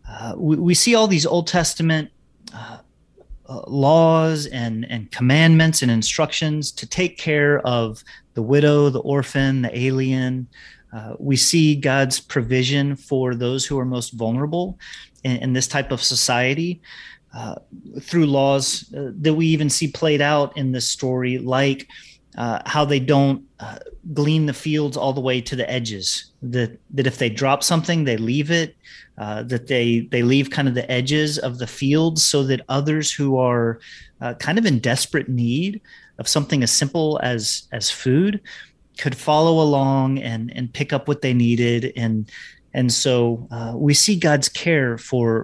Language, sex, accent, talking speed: English, male, American, 170 wpm